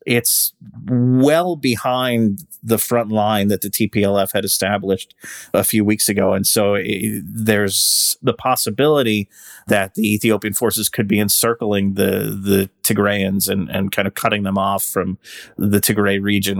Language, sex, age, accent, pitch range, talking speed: English, male, 30-49, American, 100-110 Hz, 150 wpm